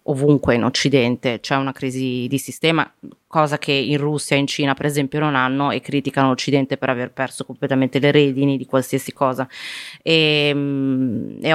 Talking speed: 170 wpm